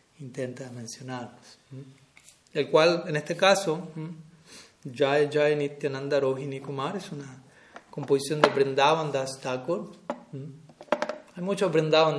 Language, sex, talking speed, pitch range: Spanish, male, 120 wpm, 130-155 Hz